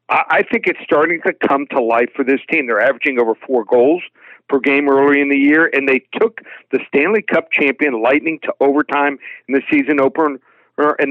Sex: male